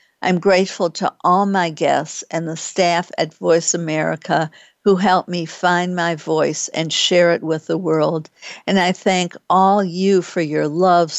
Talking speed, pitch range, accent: 170 wpm, 160-185 Hz, American